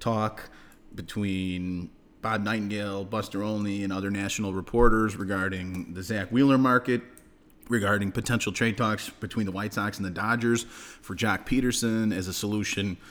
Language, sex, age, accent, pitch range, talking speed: English, male, 30-49, American, 100-120 Hz, 145 wpm